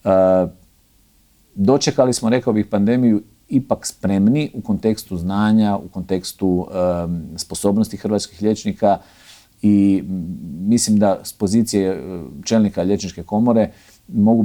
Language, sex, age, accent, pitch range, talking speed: Croatian, male, 50-69, native, 85-105 Hz, 110 wpm